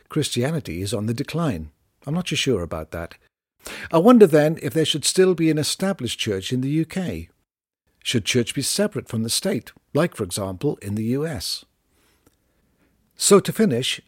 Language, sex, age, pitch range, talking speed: English, male, 50-69, 110-155 Hz, 175 wpm